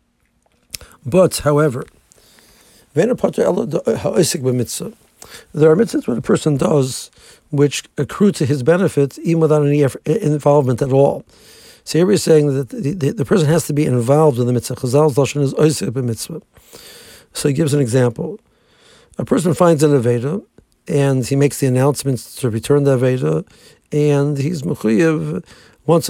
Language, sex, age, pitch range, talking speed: English, male, 60-79, 135-160 Hz, 135 wpm